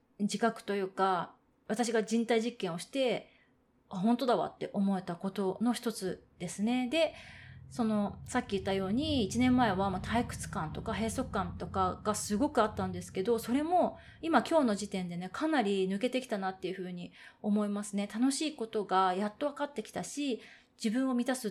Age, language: 20-39, Japanese